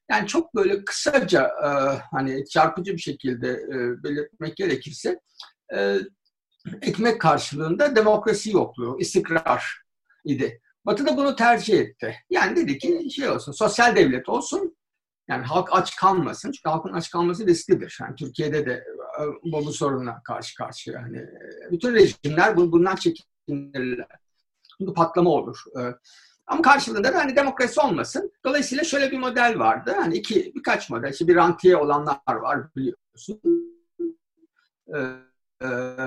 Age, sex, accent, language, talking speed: 60-79, male, native, Turkish, 125 wpm